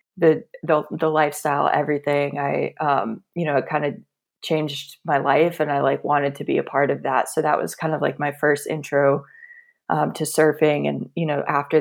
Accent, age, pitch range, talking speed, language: American, 20-39, 145-155 Hz, 210 wpm, English